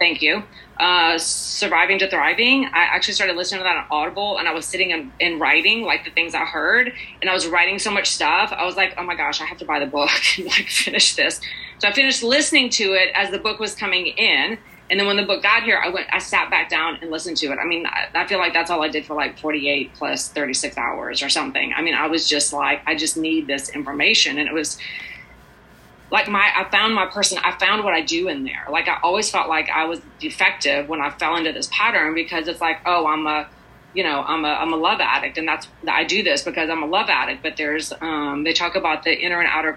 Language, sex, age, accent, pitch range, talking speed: English, female, 30-49, American, 155-190 Hz, 255 wpm